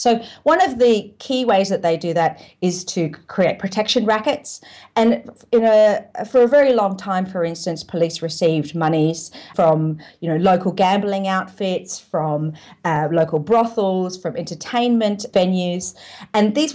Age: 40-59